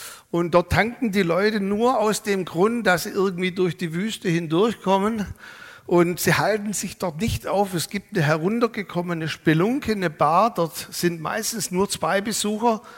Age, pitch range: 60-79, 160-210 Hz